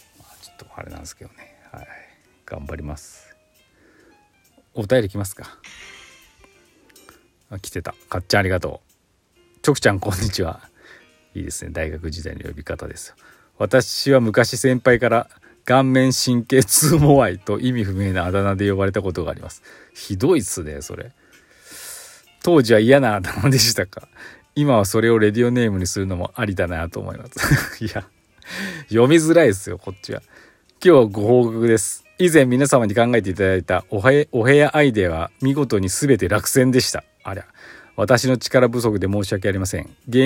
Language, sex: Japanese, male